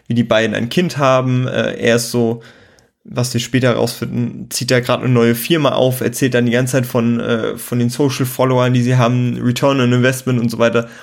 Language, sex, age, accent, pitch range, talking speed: German, male, 20-39, German, 120-135 Hz, 205 wpm